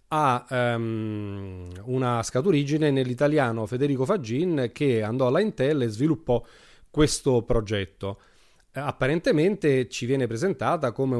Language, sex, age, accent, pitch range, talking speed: Italian, male, 30-49, native, 115-135 Hz, 105 wpm